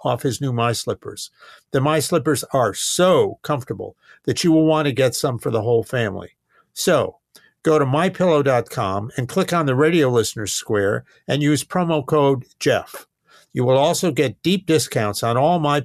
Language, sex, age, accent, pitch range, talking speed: English, male, 50-69, American, 115-155 Hz, 180 wpm